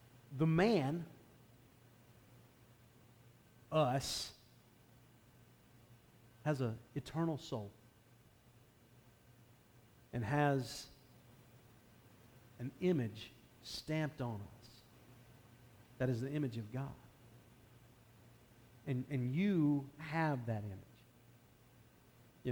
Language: English